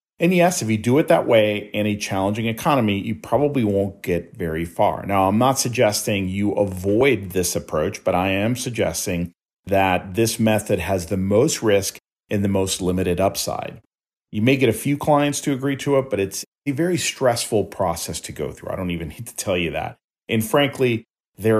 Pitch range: 95-125 Hz